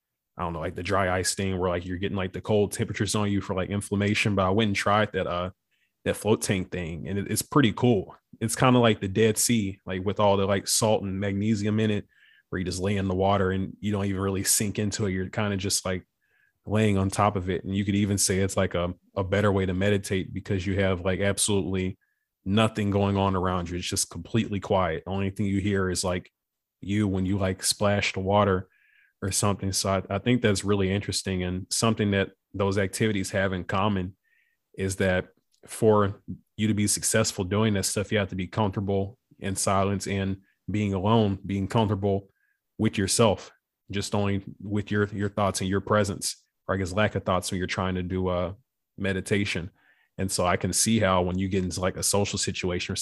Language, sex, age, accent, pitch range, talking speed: English, male, 20-39, American, 95-105 Hz, 225 wpm